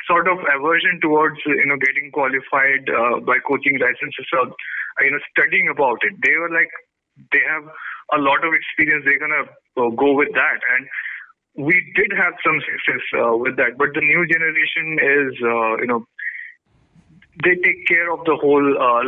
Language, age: English, 30-49